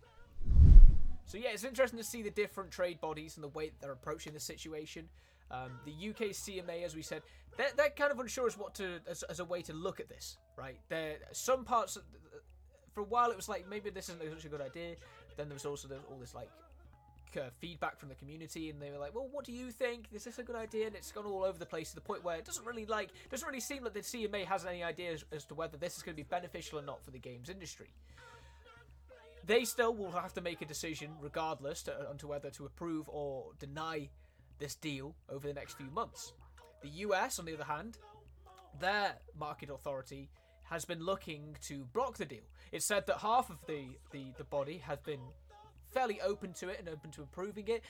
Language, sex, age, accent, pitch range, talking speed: Italian, male, 20-39, British, 145-205 Hz, 235 wpm